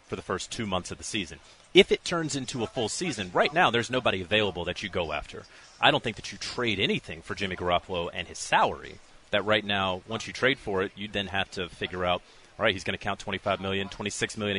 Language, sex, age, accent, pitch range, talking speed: English, male, 30-49, American, 100-120 Hz, 250 wpm